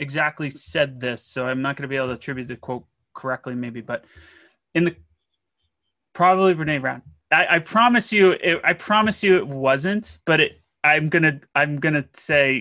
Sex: male